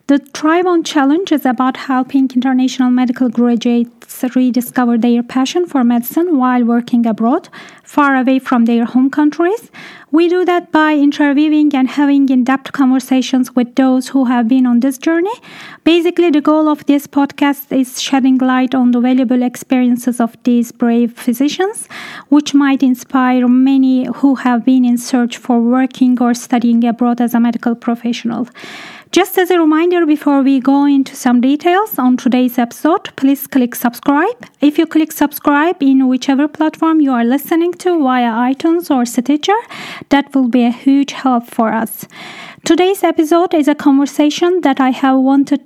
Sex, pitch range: female, 245-290 Hz